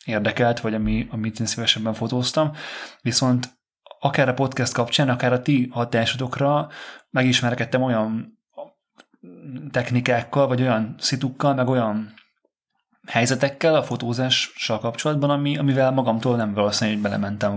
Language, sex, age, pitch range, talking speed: Hungarian, male, 30-49, 110-135 Hz, 120 wpm